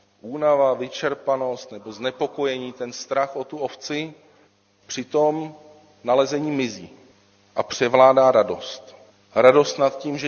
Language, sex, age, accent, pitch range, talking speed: Czech, male, 40-59, native, 120-145 Hz, 110 wpm